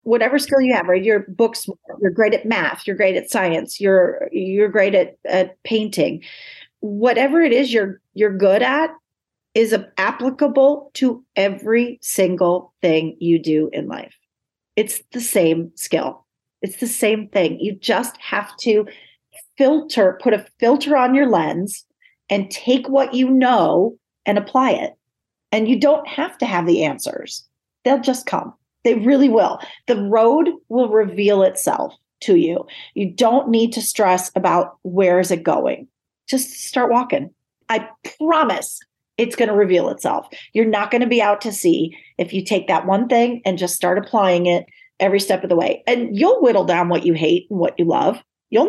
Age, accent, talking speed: 40-59, American, 175 wpm